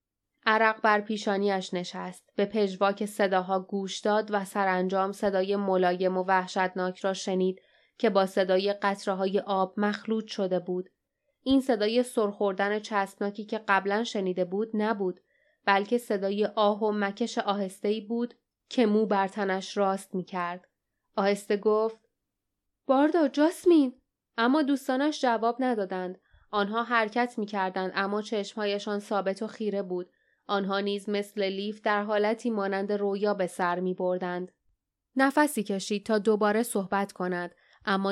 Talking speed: 130 wpm